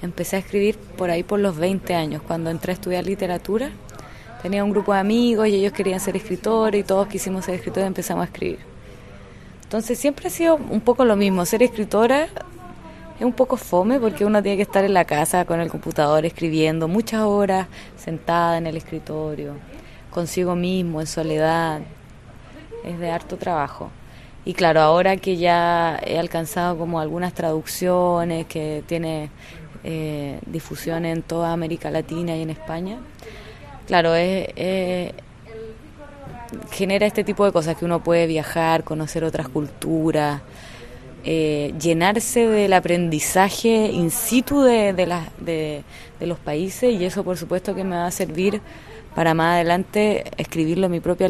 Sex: female